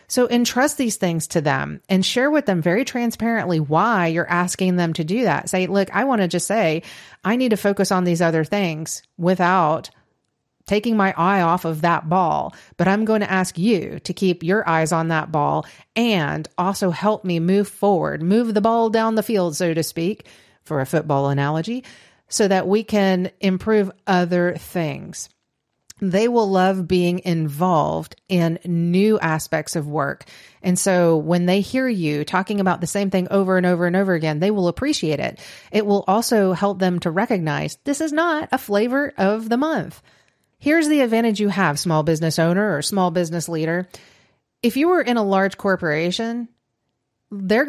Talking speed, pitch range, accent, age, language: 185 wpm, 170-210 Hz, American, 40-59, English